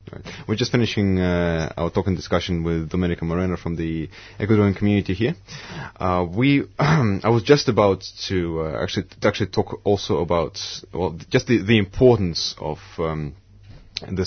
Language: English